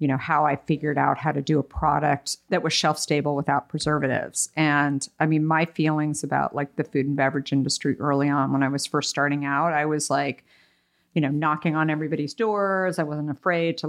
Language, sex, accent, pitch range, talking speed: English, female, American, 140-160 Hz, 215 wpm